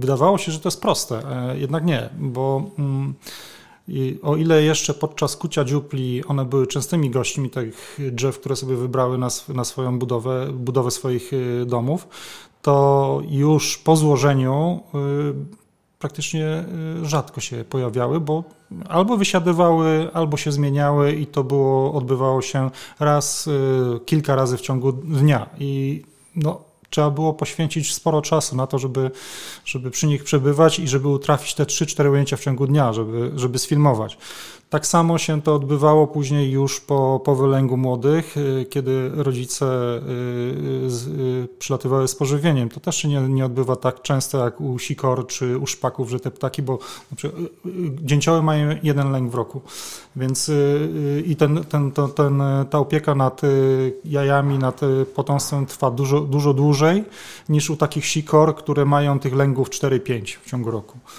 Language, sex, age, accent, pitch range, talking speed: Polish, male, 30-49, native, 130-150 Hz, 150 wpm